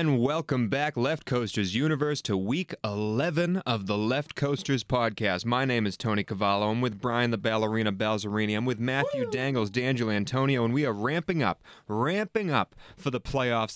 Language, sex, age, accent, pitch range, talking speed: English, male, 30-49, American, 105-130 Hz, 180 wpm